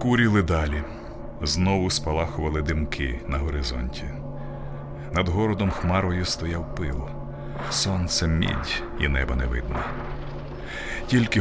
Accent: native